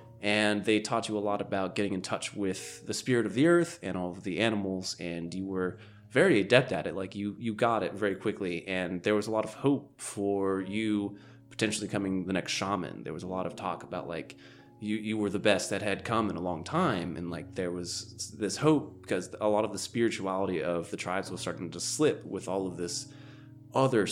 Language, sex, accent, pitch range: English, male, American, 95-115 Hz